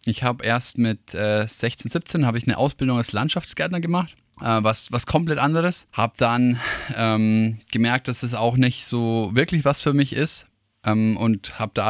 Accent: German